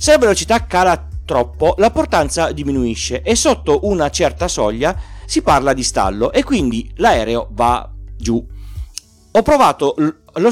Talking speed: 145 wpm